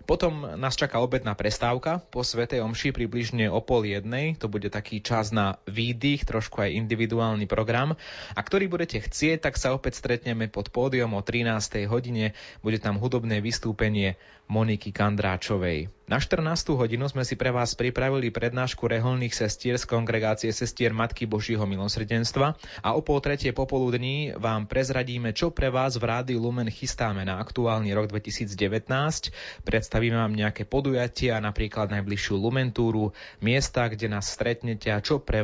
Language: Slovak